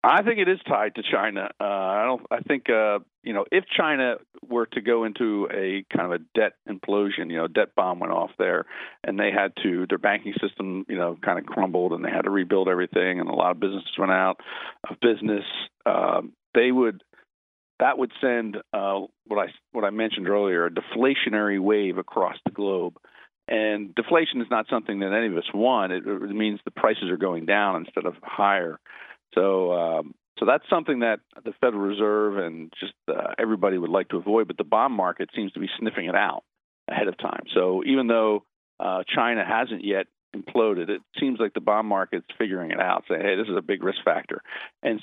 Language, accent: English, American